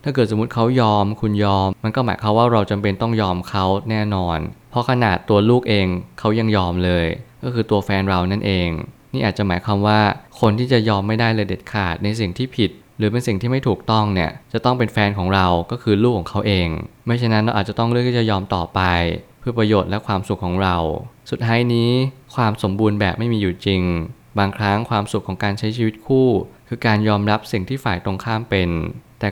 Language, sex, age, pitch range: Thai, male, 20-39, 100-115 Hz